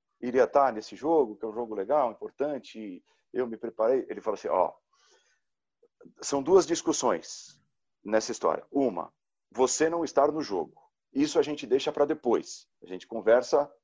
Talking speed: 170 wpm